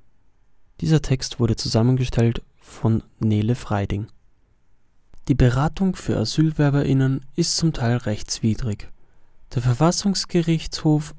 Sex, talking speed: male, 90 wpm